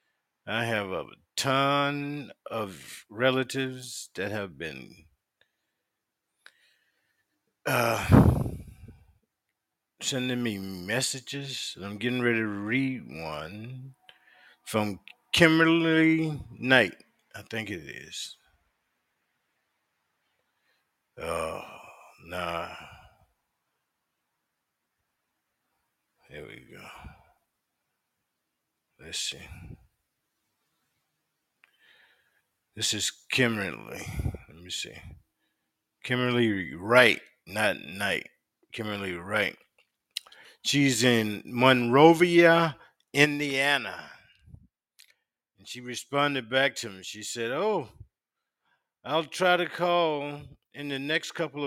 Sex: male